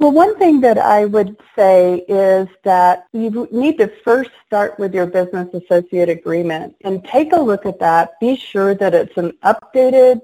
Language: English